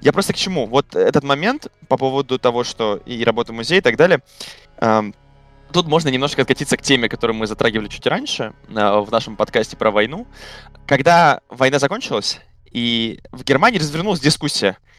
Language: Russian